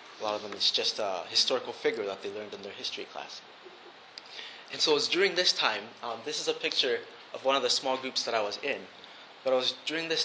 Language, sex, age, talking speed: English, male, 20-39, 250 wpm